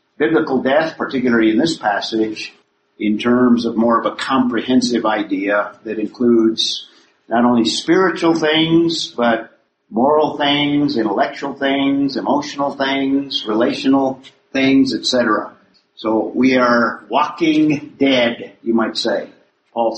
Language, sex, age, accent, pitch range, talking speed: English, male, 50-69, American, 115-160 Hz, 115 wpm